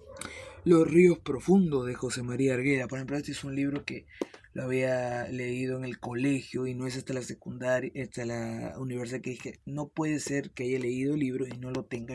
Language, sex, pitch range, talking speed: Spanish, male, 125-145 Hz, 210 wpm